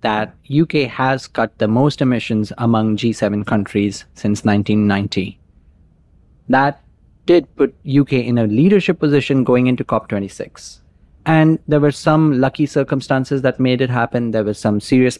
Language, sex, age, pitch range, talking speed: English, male, 30-49, 110-140 Hz, 145 wpm